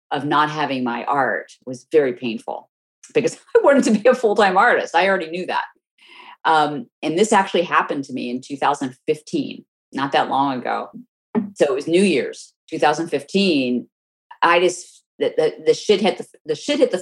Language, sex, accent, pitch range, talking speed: English, female, American, 140-185 Hz, 185 wpm